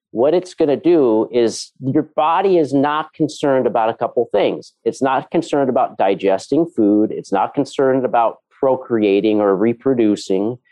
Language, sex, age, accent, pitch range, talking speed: English, male, 40-59, American, 115-155 Hz, 160 wpm